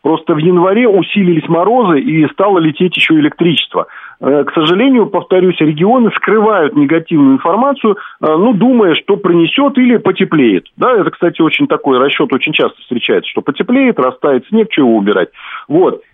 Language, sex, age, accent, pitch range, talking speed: Russian, male, 40-59, native, 155-220 Hz, 145 wpm